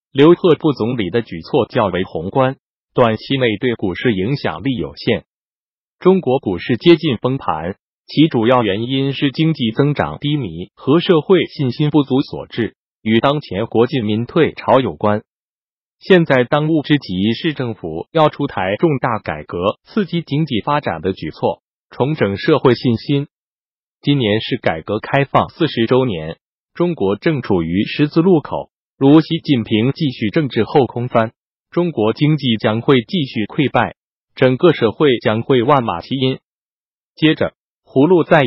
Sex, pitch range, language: male, 110-150 Hz, Chinese